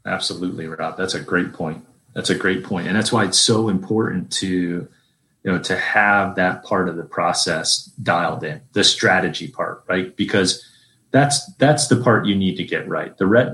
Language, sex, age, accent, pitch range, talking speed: English, male, 30-49, American, 90-115 Hz, 190 wpm